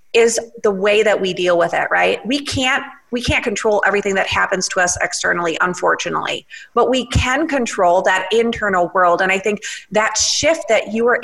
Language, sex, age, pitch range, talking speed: English, female, 30-49, 200-265 Hz, 190 wpm